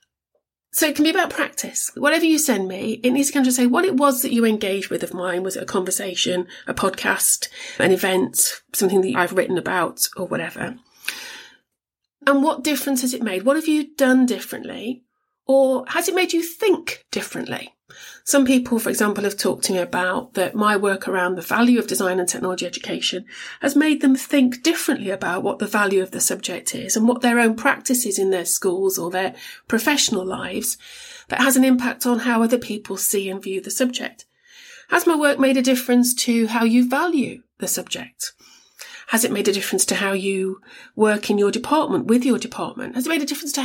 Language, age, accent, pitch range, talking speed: English, 40-59, British, 195-270 Hz, 205 wpm